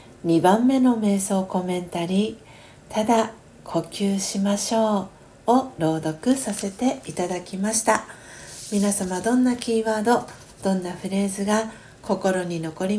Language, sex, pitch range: Japanese, female, 170-215 Hz